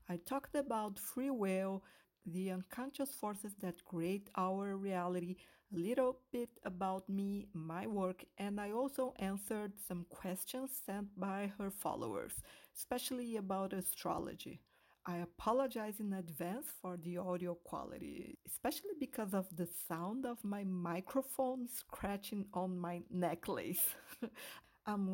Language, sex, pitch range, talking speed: English, female, 180-235 Hz, 125 wpm